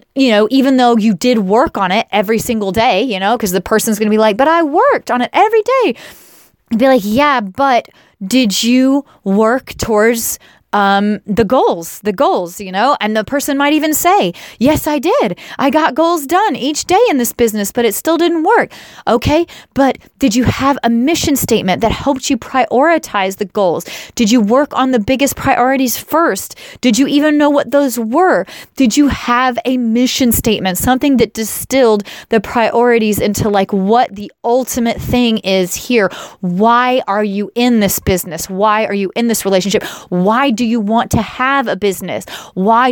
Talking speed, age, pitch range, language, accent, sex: 190 wpm, 30-49, 210-270 Hz, English, American, female